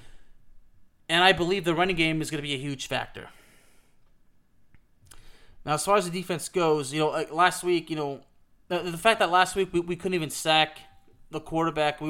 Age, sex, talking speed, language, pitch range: 20-39, male, 200 wpm, English, 155-185 Hz